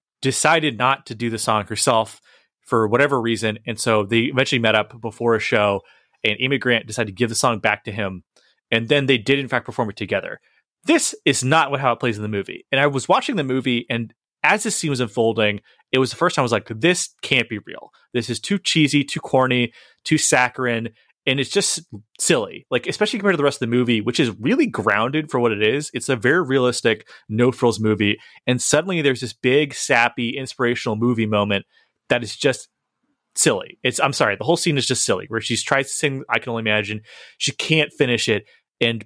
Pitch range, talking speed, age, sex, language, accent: 110-135 Hz, 220 wpm, 30-49, male, English, American